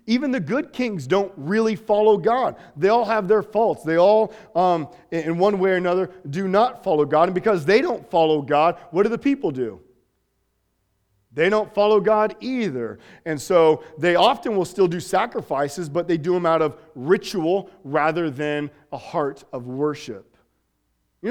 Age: 40-59